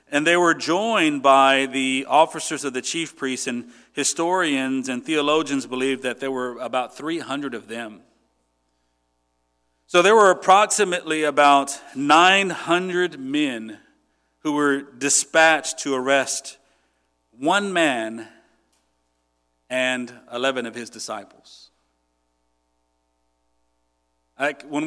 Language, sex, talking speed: English, male, 105 wpm